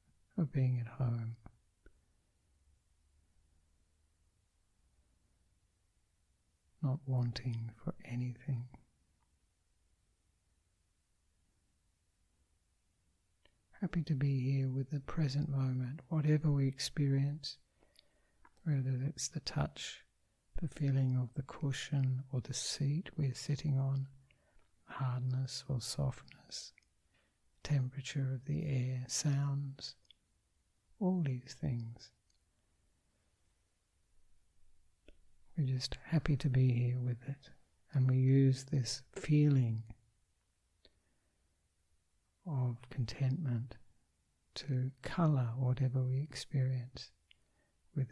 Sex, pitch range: male, 90-135 Hz